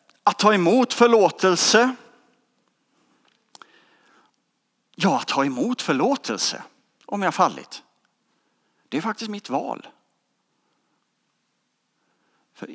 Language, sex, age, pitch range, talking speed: English, male, 50-69, 155-245 Hz, 90 wpm